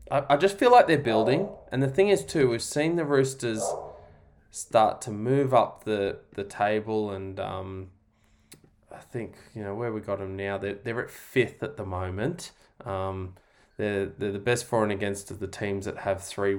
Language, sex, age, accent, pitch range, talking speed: English, male, 10-29, Australian, 95-135 Hz, 195 wpm